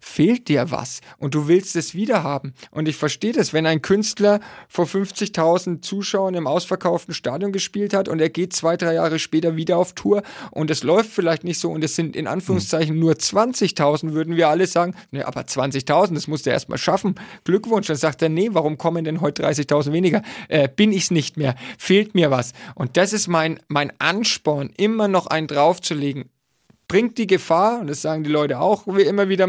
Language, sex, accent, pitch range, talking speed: German, male, German, 155-195 Hz, 205 wpm